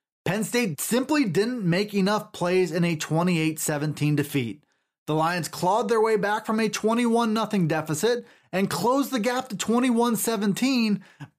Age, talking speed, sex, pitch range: 30-49, 140 wpm, male, 165-220 Hz